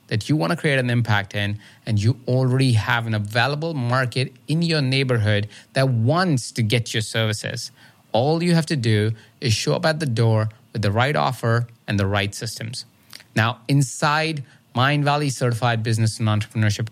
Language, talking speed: English, 180 wpm